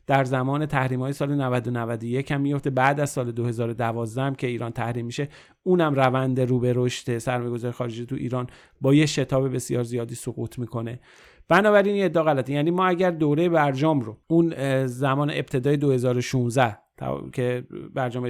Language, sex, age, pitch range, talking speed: Persian, male, 40-59, 125-145 Hz, 160 wpm